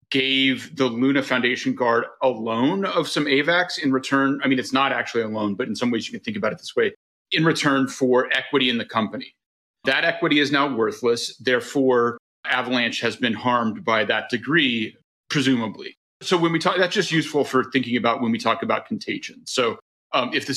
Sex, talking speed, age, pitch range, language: male, 205 wpm, 30-49, 120-145 Hz, English